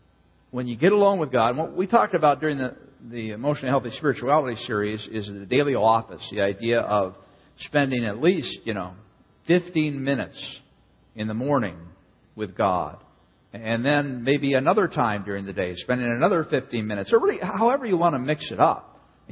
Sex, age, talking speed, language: male, 50-69, 180 wpm, English